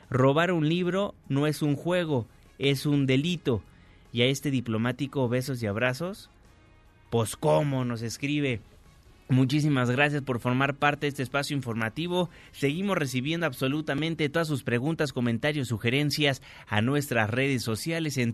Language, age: Spanish, 30-49